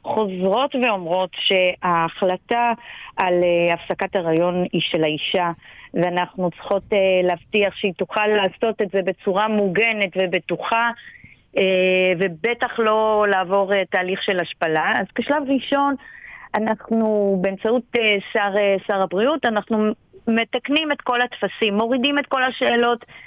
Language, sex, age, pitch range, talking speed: Hebrew, female, 30-49, 190-230 Hz, 110 wpm